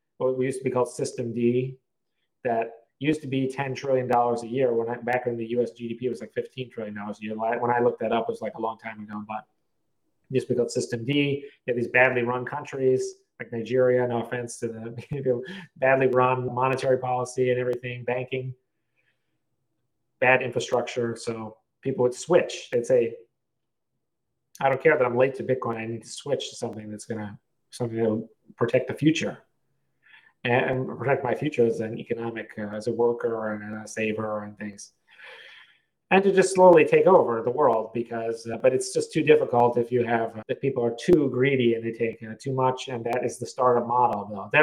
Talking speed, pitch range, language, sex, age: 200 wpm, 115-140 Hz, English, male, 30-49